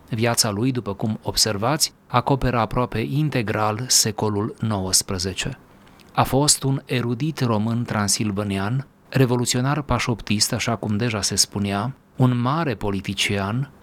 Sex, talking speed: male, 115 wpm